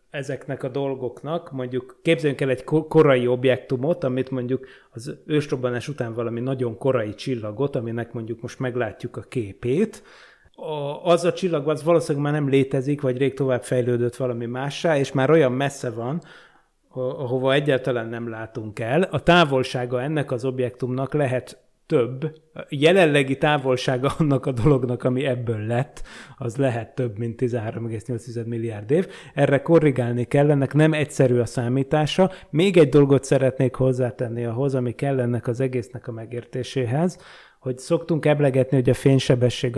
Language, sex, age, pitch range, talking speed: Hungarian, male, 30-49, 125-145 Hz, 150 wpm